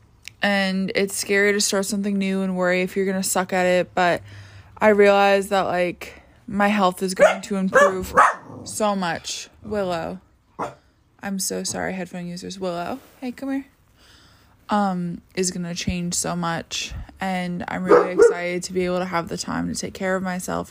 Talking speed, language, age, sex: 180 wpm, English, 20-39, female